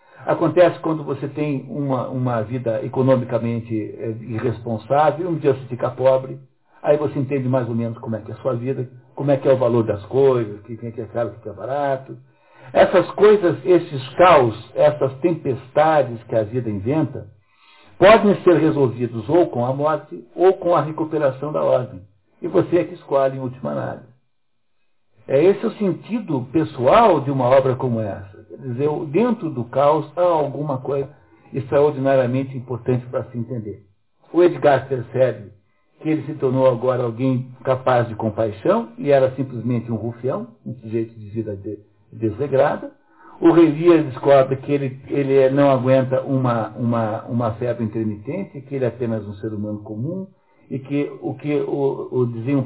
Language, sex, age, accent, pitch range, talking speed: Portuguese, male, 60-79, Brazilian, 115-145 Hz, 165 wpm